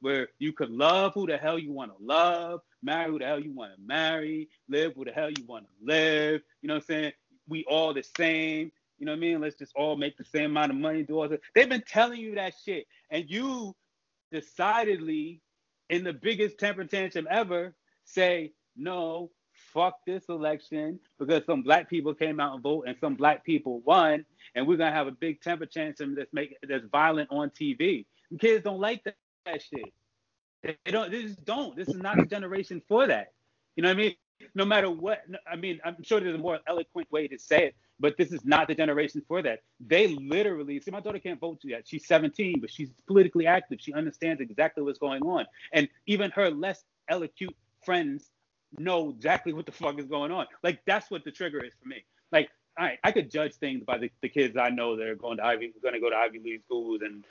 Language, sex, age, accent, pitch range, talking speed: English, male, 30-49, American, 150-195 Hz, 225 wpm